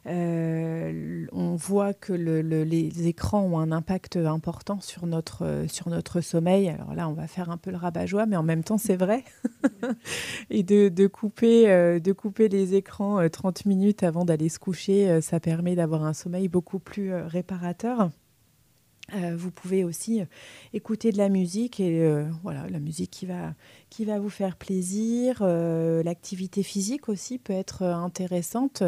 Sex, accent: female, French